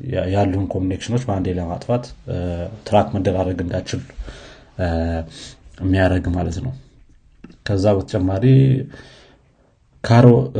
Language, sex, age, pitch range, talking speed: Amharic, male, 30-49, 90-115 Hz, 80 wpm